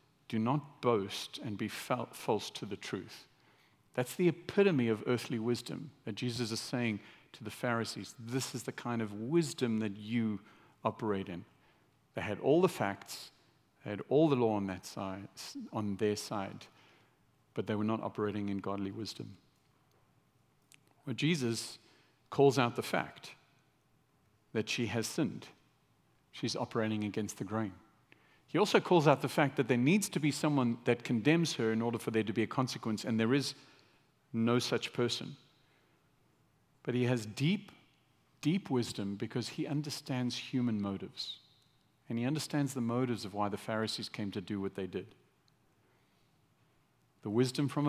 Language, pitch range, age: English, 110-135 Hz, 50-69